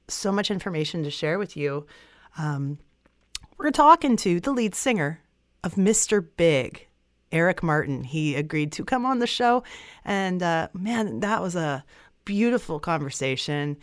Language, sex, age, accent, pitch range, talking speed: English, female, 30-49, American, 160-215 Hz, 150 wpm